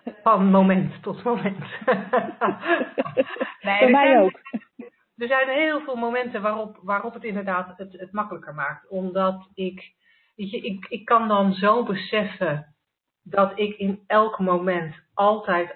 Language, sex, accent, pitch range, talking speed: Dutch, female, Dutch, 175-215 Hz, 130 wpm